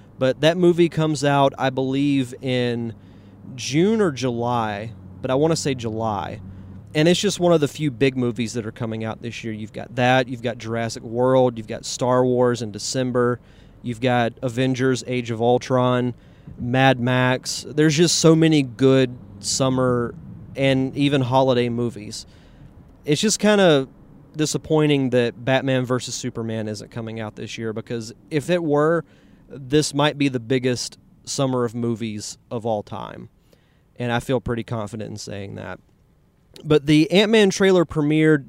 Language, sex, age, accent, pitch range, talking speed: English, male, 30-49, American, 115-140 Hz, 165 wpm